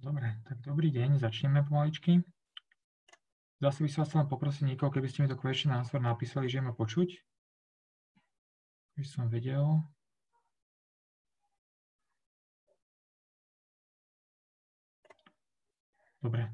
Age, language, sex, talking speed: 30-49, Slovak, male, 95 wpm